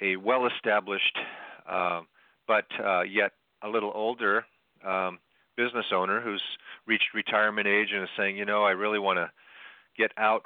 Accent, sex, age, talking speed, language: American, male, 40-59, 155 wpm, English